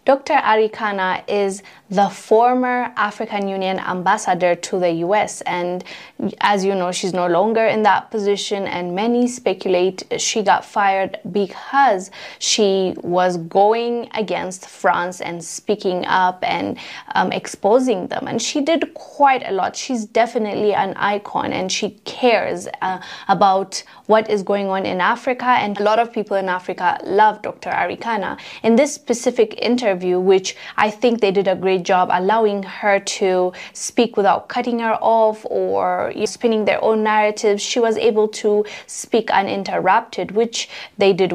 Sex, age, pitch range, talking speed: female, 20-39, 190-245 Hz, 155 wpm